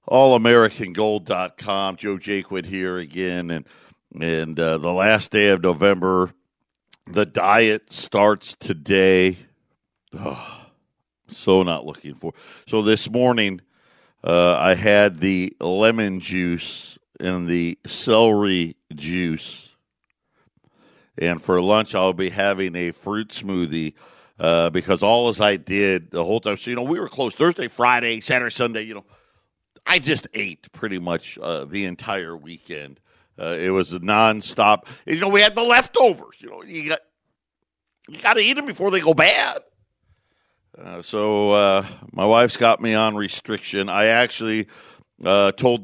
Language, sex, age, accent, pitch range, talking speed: English, male, 50-69, American, 90-110 Hz, 145 wpm